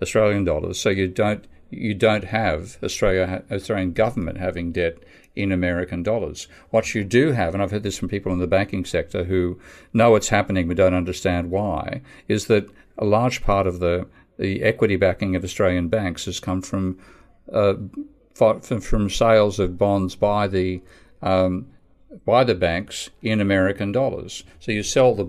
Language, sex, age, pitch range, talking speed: English, male, 50-69, 90-110 Hz, 175 wpm